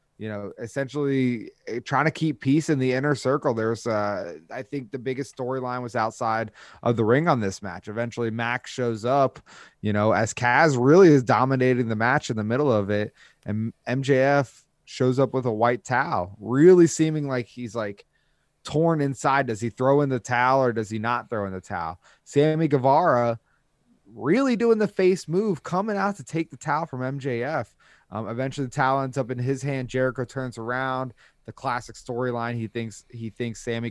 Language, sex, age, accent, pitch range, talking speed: English, male, 20-39, American, 115-135 Hz, 190 wpm